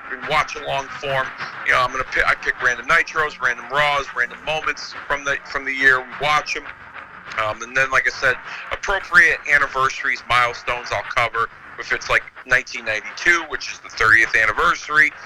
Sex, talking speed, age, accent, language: male, 175 wpm, 40-59, American, English